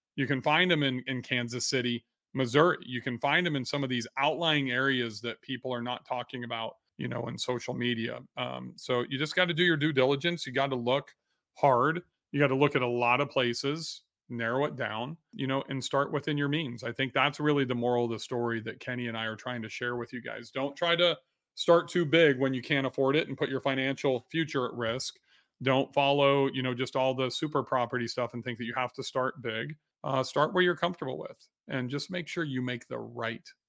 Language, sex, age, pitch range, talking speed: English, male, 30-49, 125-150 Hz, 240 wpm